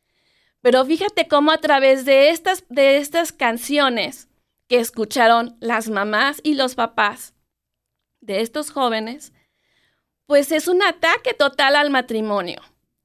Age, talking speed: 30-49, 120 wpm